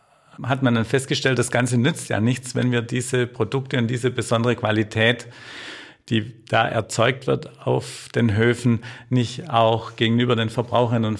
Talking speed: 160 wpm